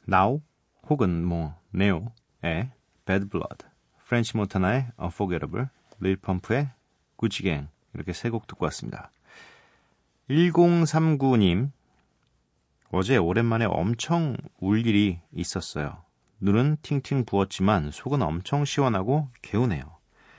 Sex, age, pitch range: male, 30-49, 90-135 Hz